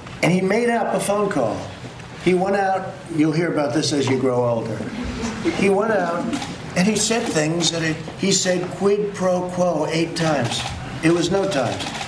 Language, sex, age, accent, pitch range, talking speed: English, male, 50-69, American, 145-180 Hz, 185 wpm